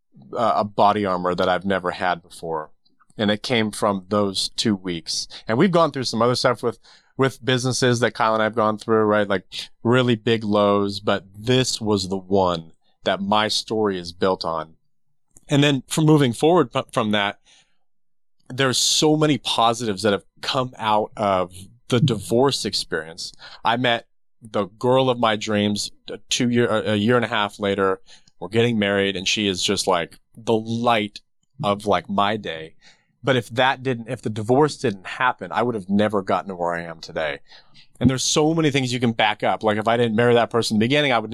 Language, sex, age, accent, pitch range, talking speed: English, male, 30-49, American, 100-125 Hz, 195 wpm